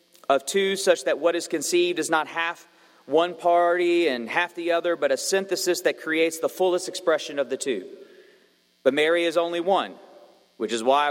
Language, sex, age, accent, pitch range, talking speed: English, male, 40-59, American, 150-175 Hz, 190 wpm